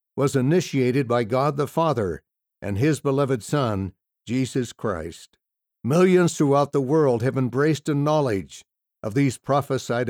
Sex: male